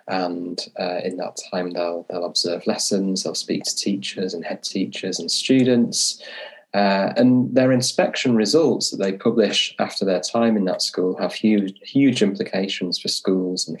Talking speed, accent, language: 170 wpm, British, English